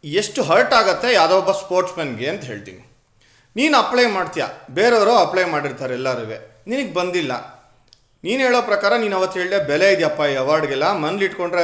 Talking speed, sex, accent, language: 150 wpm, male, native, Kannada